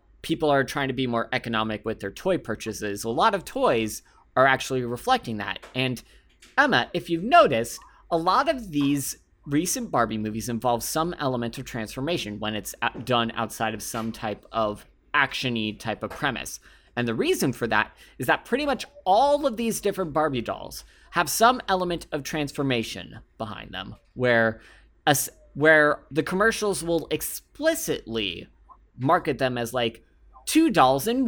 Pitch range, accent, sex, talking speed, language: 115-170 Hz, American, male, 160 wpm, English